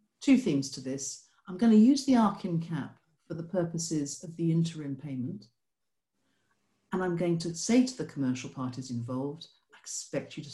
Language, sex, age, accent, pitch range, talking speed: English, female, 50-69, British, 140-195 Hz, 175 wpm